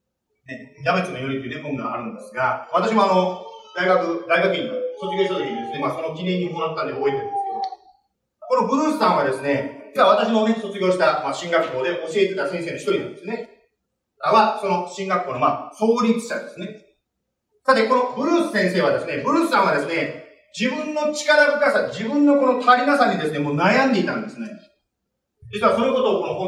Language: Japanese